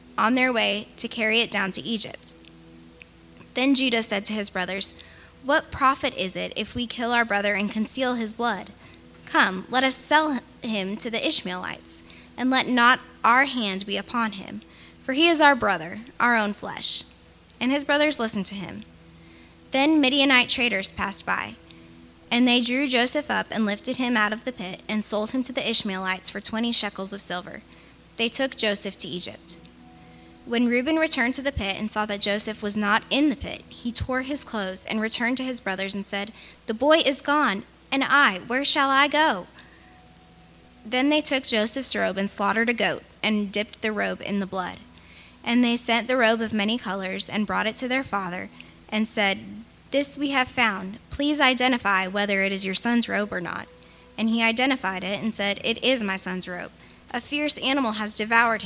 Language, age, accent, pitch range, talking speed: English, 10-29, American, 190-255 Hz, 195 wpm